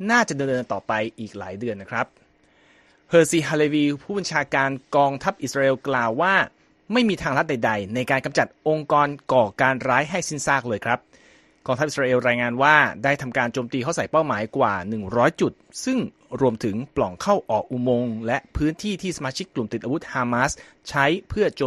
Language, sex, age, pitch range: Thai, male, 30-49, 130-160 Hz